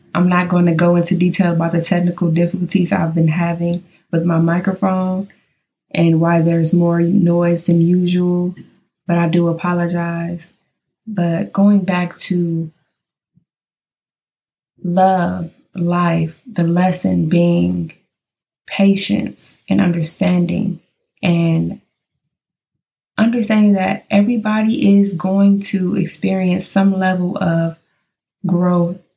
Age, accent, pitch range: 20-39, American, 170-195 Hz